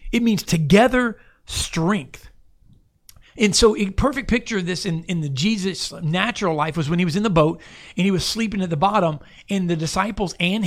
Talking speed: 195 wpm